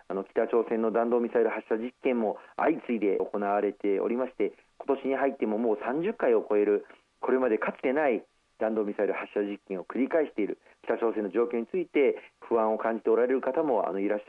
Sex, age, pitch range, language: male, 40-59, 110-140 Hz, Japanese